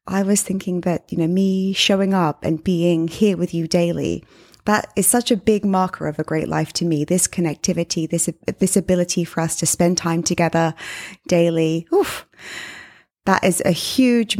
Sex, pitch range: female, 165-215 Hz